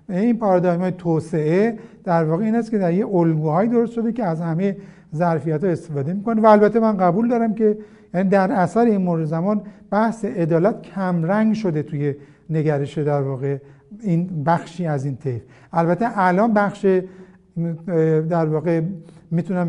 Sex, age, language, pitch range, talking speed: male, 60-79, Persian, 160-210 Hz, 150 wpm